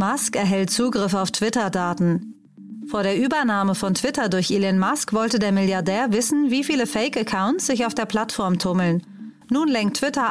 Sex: female